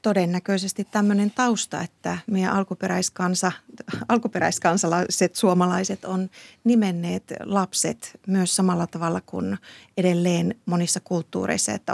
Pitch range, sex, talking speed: 175-210 Hz, female, 90 wpm